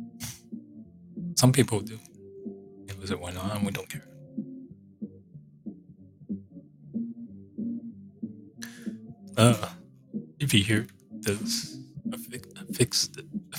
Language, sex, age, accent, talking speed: English, male, 20-39, American, 80 wpm